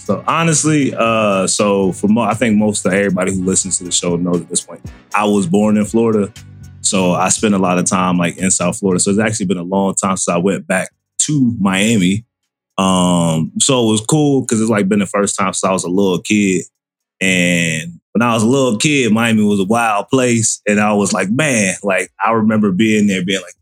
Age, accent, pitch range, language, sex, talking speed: 30-49, American, 100-140 Hz, English, male, 230 wpm